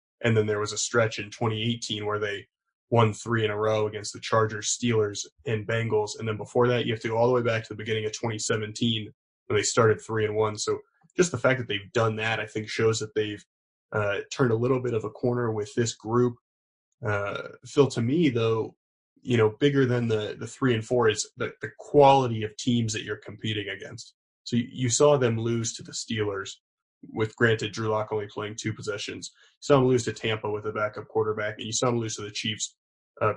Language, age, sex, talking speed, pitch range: English, 20-39, male, 230 wpm, 105-125 Hz